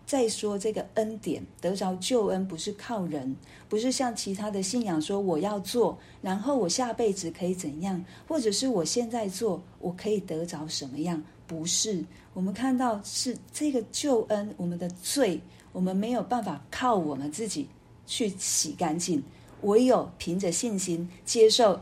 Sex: female